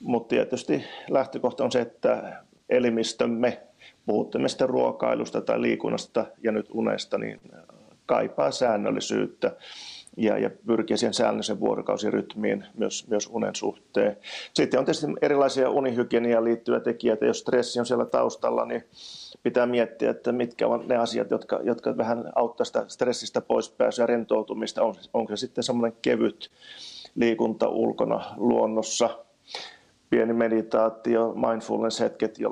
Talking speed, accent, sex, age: 120 wpm, native, male, 30-49